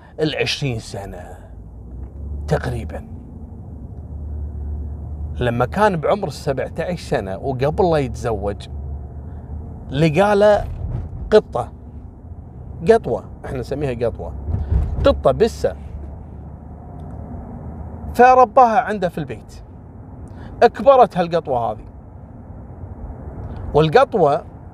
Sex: male